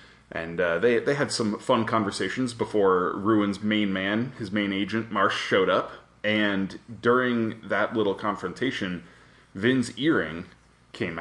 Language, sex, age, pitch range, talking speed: English, male, 20-39, 100-120 Hz, 140 wpm